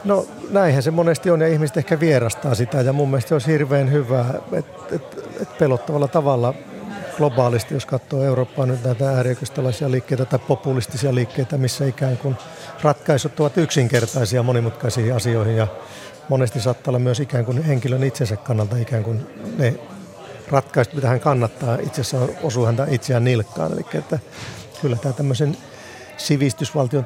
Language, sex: Finnish, male